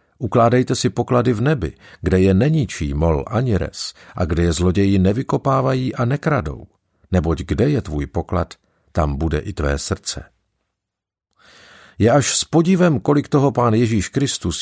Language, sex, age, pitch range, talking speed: Czech, male, 50-69, 80-120 Hz, 150 wpm